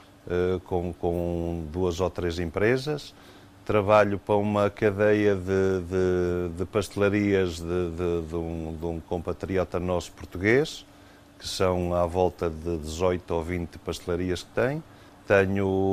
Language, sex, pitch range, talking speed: Portuguese, male, 90-105 Hz, 125 wpm